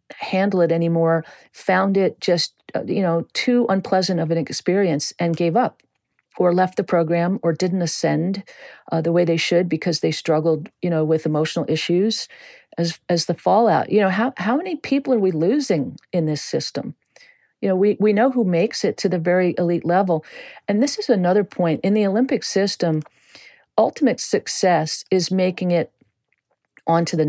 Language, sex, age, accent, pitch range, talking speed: English, female, 50-69, American, 165-200 Hz, 180 wpm